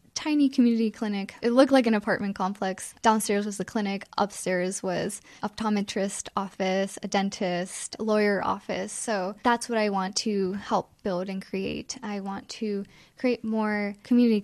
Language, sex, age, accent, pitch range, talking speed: English, female, 10-29, American, 195-230 Hz, 155 wpm